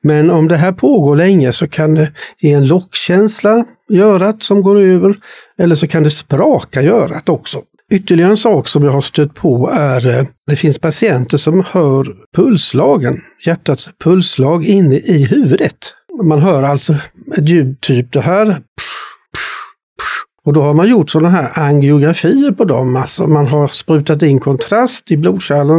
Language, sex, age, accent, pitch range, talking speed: Swedish, male, 60-79, native, 145-190 Hz, 165 wpm